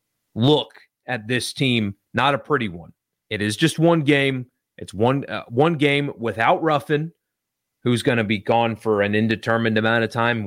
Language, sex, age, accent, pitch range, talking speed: English, male, 30-49, American, 110-130 Hz, 180 wpm